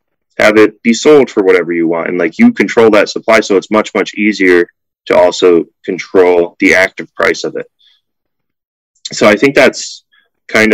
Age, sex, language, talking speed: 30-49, male, English, 180 wpm